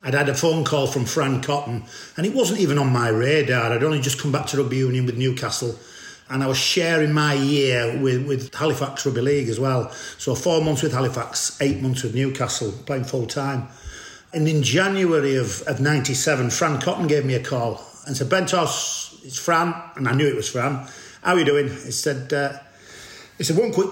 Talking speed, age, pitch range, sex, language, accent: 210 wpm, 40-59, 130-155 Hz, male, English, British